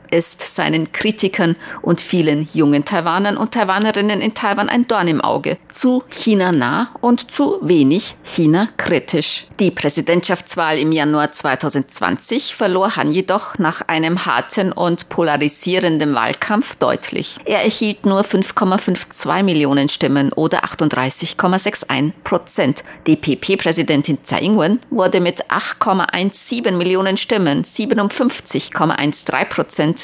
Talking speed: 115 wpm